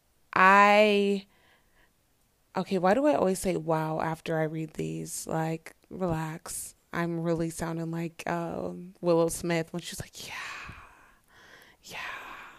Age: 20-39